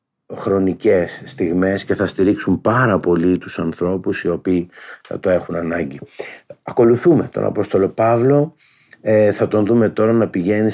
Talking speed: 145 wpm